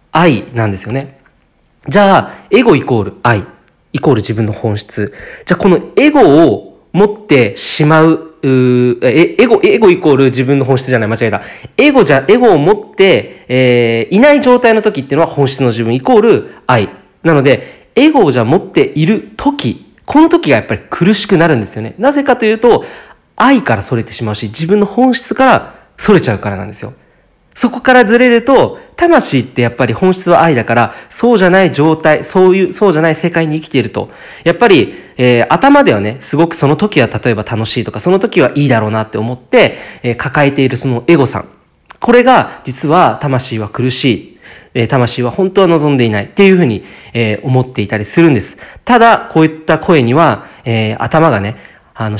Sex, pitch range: male, 120-195 Hz